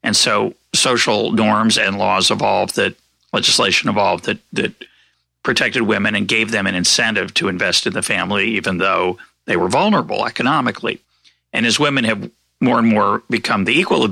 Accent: American